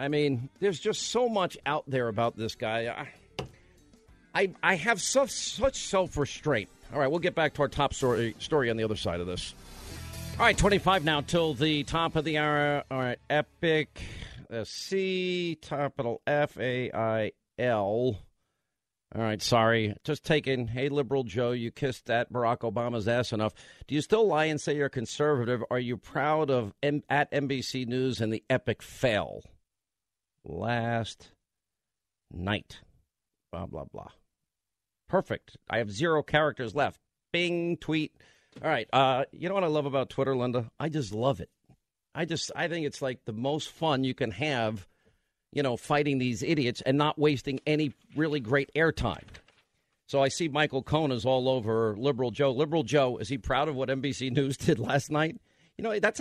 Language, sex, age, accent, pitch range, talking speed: English, male, 50-69, American, 115-155 Hz, 175 wpm